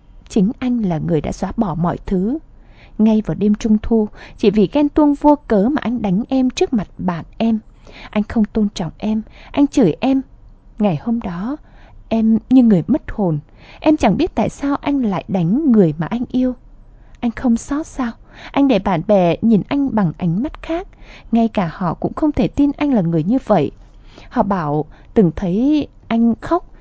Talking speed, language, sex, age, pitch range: 195 wpm, Vietnamese, female, 20-39, 195-255 Hz